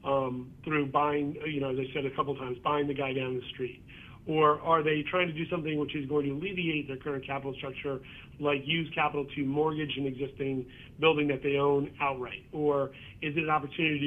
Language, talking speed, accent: English, 215 wpm, American